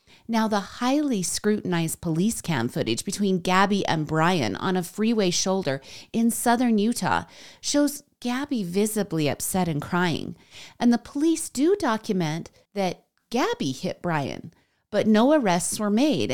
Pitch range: 170-240 Hz